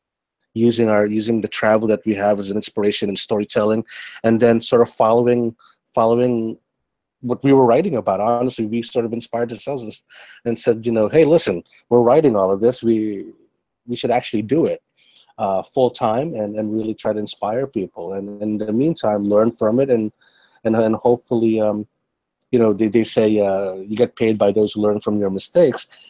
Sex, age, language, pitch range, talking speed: male, 30-49, English, 100-115 Hz, 200 wpm